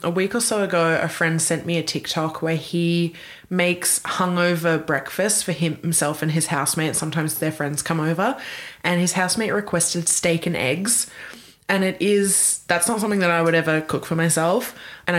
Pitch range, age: 160-180 Hz, 20-39